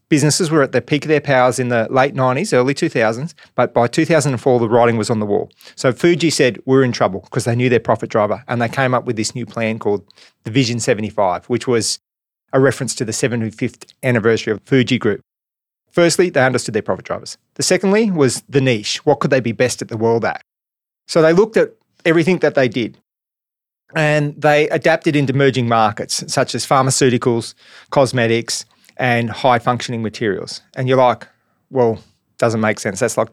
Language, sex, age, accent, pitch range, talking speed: English, male, 30-49, Australian, 120-150 Hz, 195 wpm